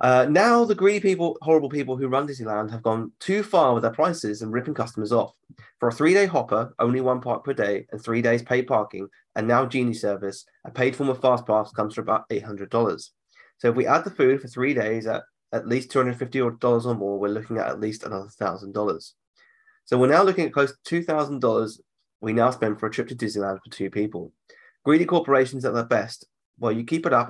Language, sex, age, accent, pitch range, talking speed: English, male, 20-39, British, 110-135 Hz, 220 wpm